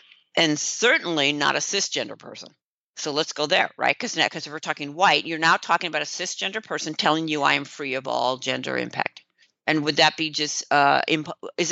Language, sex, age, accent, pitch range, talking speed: English, female, 50-69, American, 145-175 Hz, 205 wpm